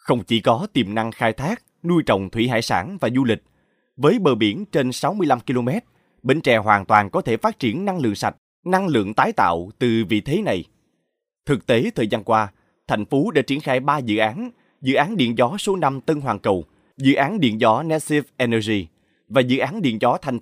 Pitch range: 115-155 Hz